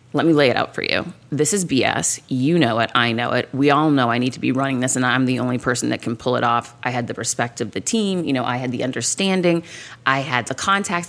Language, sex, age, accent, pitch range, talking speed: English, female, 30-49, American, 125-160 Hz, 280 wpm